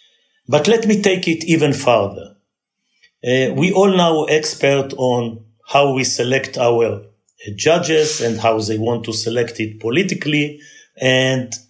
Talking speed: 145 wpm